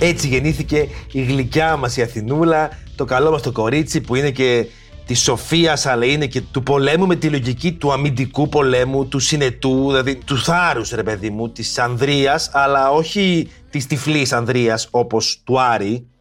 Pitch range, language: 115-155 Hz, Greek